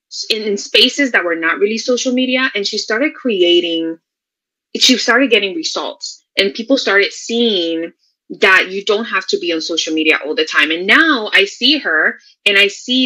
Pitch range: 175-270 Hz